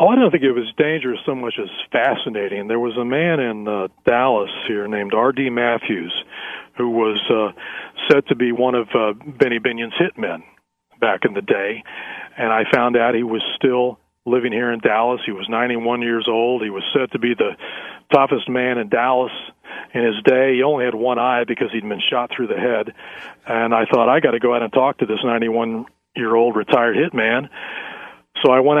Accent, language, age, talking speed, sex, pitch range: American, English, 40-59, 200 wpm, male, 115-135 Hz